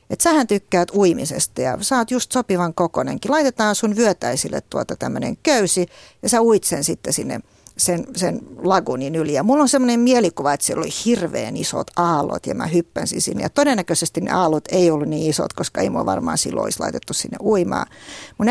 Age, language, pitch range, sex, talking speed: 50-69, Finnish, 165-230 Hz, female, 185 wpm